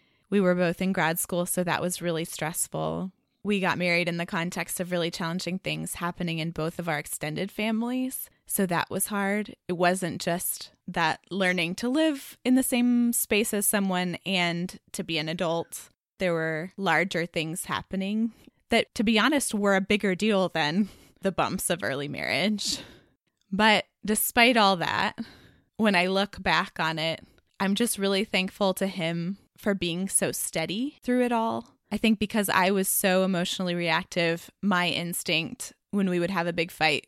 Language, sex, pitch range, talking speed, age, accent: English, female, 170-210 Hz, 175 wpm, 20-39, American